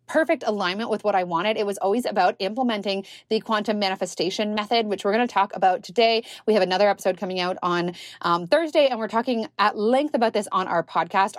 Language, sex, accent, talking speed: English, female, American, 215 wpm